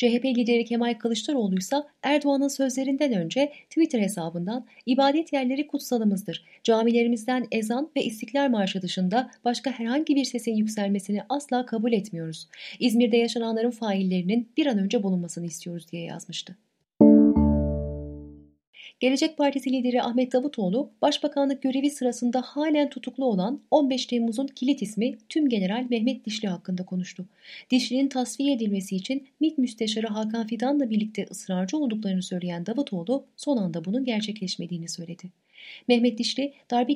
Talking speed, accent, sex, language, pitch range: 130 wpm, native, female, Turkish, 195-265 Hz